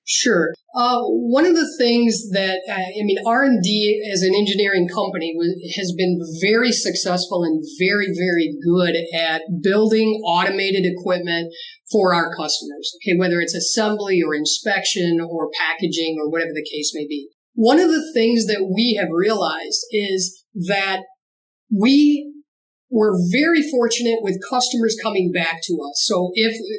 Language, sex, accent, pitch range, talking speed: English, female, American, 175-225 Hz, 150 wpm